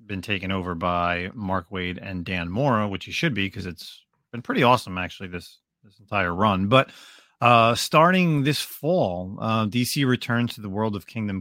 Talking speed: 190 wpm